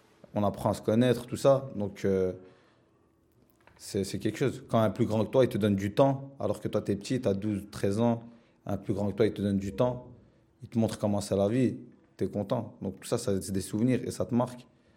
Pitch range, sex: 100-120 Hz, male